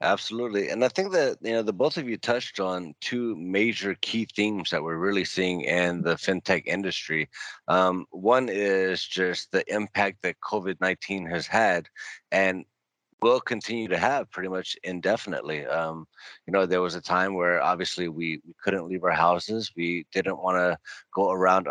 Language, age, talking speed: English, 30-49, 180 wpm